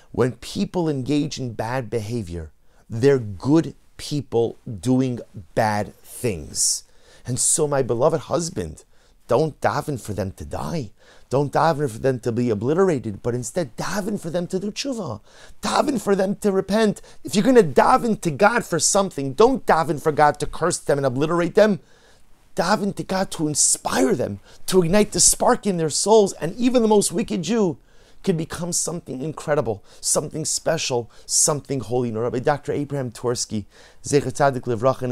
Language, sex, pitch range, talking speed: English, male, 120-170 Hz, 165 wpm